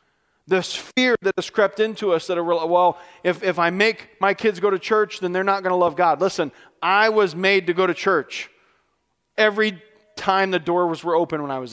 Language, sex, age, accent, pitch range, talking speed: English, male, 40-59, American, 150-195 Hz, 220 wpm